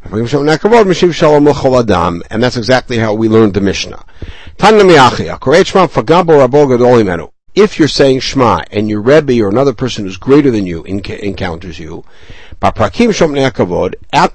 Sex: male